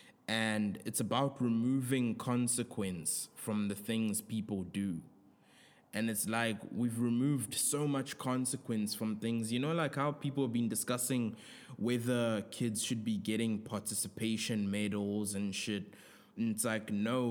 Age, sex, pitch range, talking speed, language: 20-39, male, 105-120 Hz, 140 wpm, English